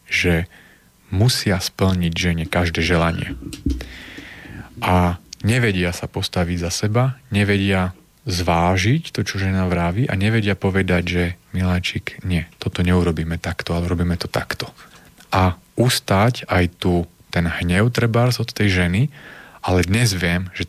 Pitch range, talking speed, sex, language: 90-105 Hz, 130 wpm, male, Slovak